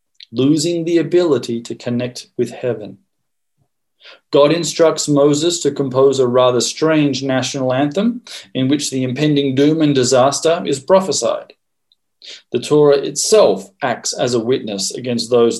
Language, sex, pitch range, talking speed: English, male, 125-150 Hz, 135 wpm